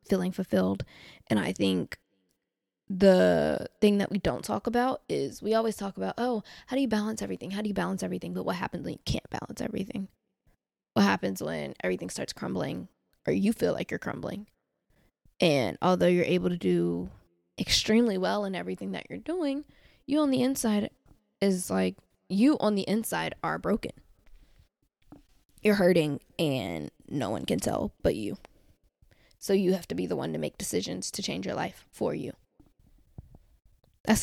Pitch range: 160-205 Hz